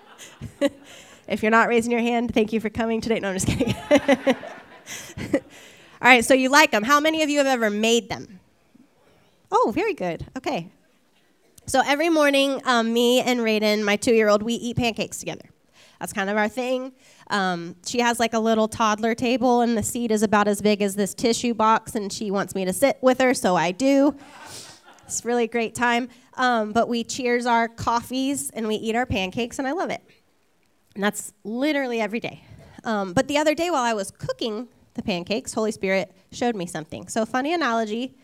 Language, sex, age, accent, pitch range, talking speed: English, female, 20-39, American, 220-280 Hz, 195 wpm